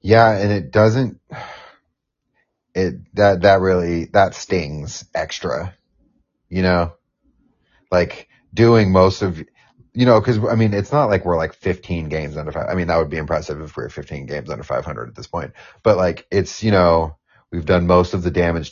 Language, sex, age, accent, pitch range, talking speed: English, male, 30-49, American, 85-105 Hz, 185 wpm